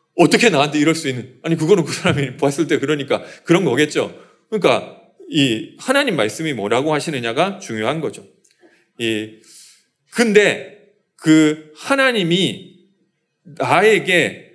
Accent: native